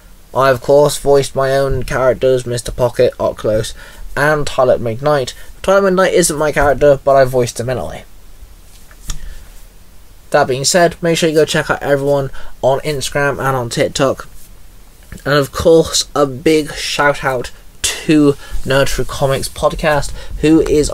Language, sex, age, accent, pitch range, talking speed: English, male, 20-39, British, 120-145 Hz, 145 wpm